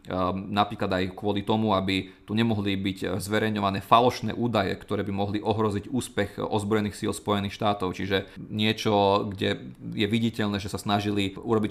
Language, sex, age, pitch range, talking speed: Slovak, male, 40-59, 100-115 Hz, 150 wpm